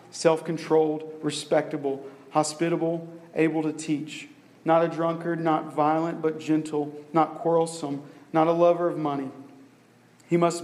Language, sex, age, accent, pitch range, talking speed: English, male, 40-59, American, 145-165 Hz, 125 wpm